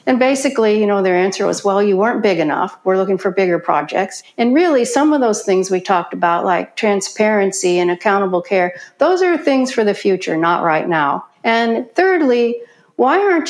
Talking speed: 195 wpm